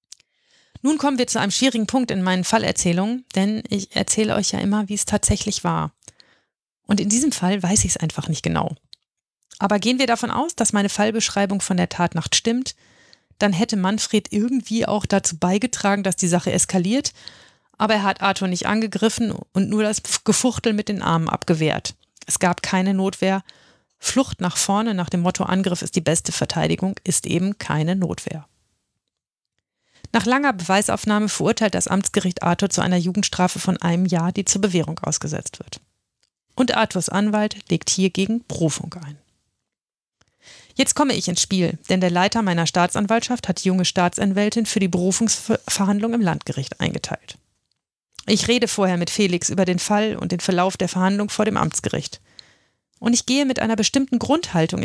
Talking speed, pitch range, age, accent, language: 170 wpm, 180-220 Hz, 30-49, German, German